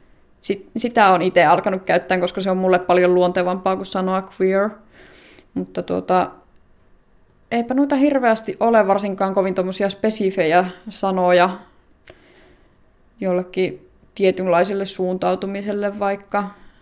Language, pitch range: Finnish, 185-205 Hz